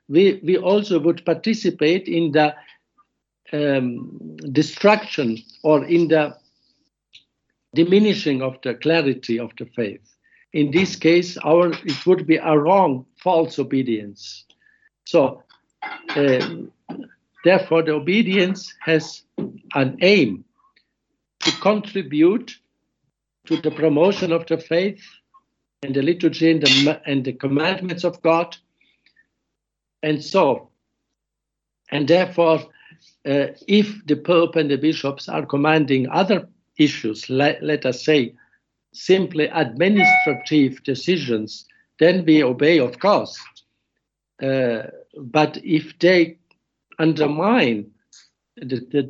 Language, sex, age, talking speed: English, male, 60-79, 110 wpm